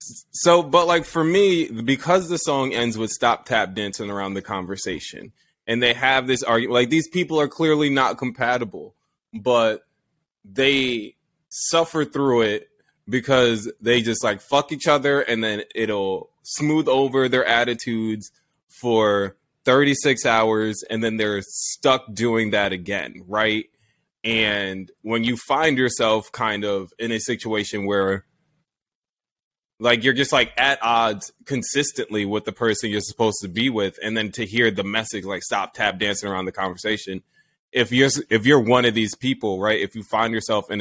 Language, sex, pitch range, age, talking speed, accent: English, male, 105-130 Hz, 20-39, 165 wpm, American